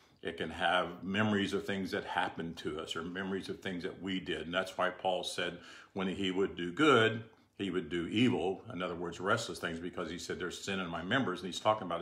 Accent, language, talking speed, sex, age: American, English, 240 wpm, male, 50-69